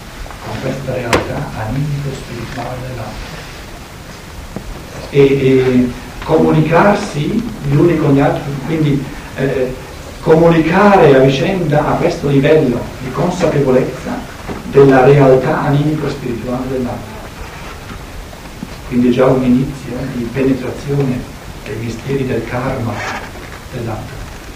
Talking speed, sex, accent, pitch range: 100 wpm, male, native, 120-145 Hz